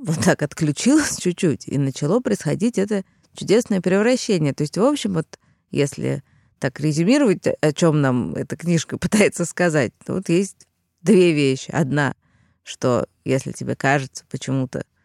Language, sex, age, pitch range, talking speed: Russian, female, 20-39, 130-160 Hz, 145 wpm